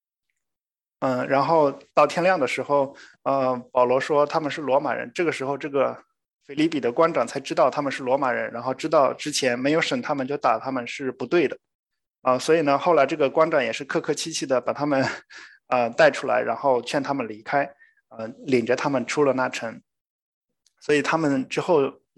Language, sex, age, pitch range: English, male, 20-39, 130-155 Hz